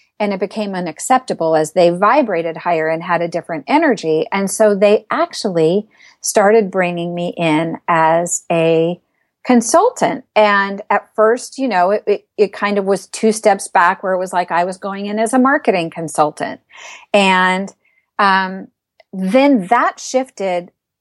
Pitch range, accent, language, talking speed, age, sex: 180-230 Hz, American, English, 155 wpm, 40-59, female